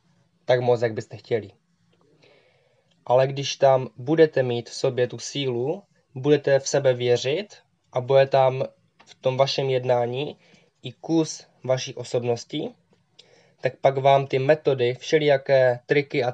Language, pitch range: Czech, 125-140 Hz